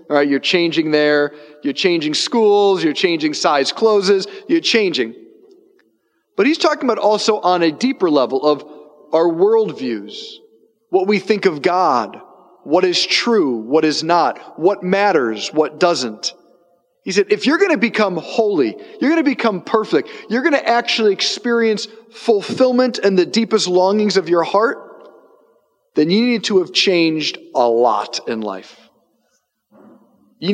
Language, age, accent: English, 40-59, American